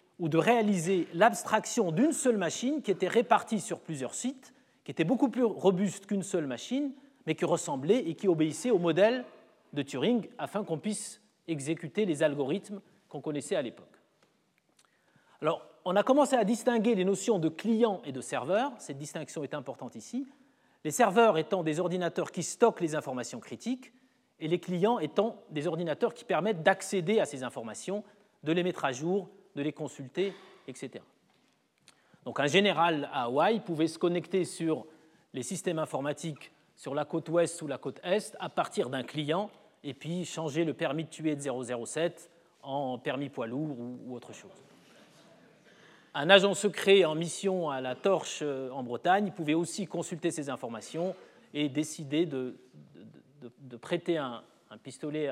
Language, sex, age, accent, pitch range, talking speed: French, male, 30-49, French, 150-205 Hz, 165 wpm